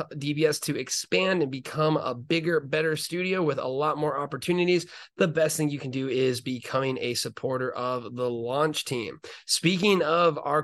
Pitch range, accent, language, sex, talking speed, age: 140-165 Hz, American, English, male, 175 wpm, 30-49